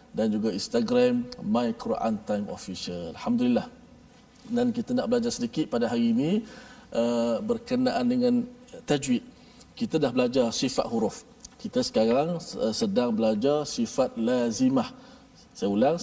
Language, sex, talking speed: Malayalam, male, 120 wpm